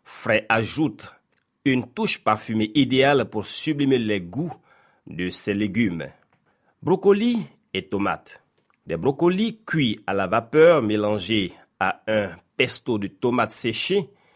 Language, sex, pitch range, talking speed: French, male, 105-150 Hz, 120 wpm